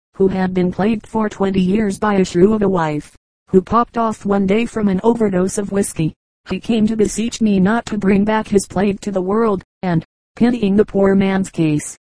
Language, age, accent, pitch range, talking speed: English, 40-59, American, 185-205 Hz, 210 wpm